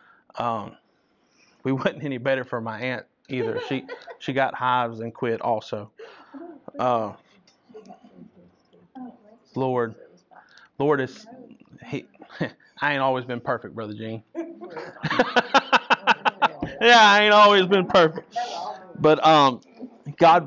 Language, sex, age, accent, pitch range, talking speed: English, male, 30-49, American, 120-145 Hz, 110 wpm